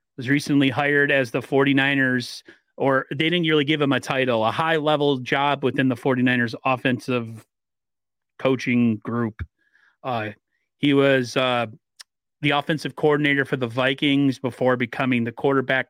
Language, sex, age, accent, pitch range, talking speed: English, male, 30-49, American, 125-140 Hz, 145 wpm